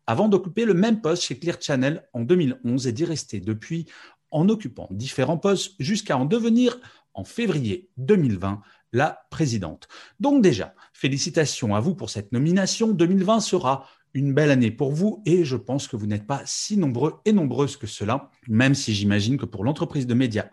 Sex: male